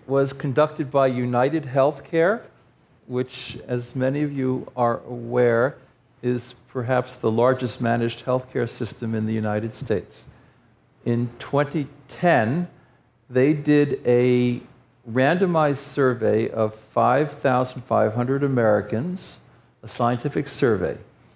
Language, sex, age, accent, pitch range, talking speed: English, male, 50-69, American, 120-140 Hz, 100 wpm